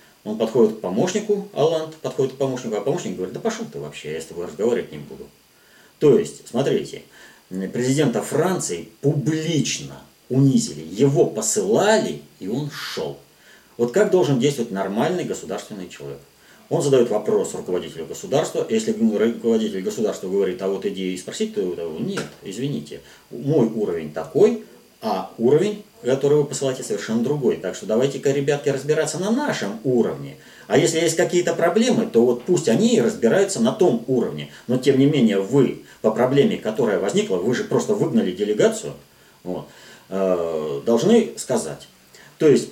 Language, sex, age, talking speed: Russian, male, 30-49, 150 wpm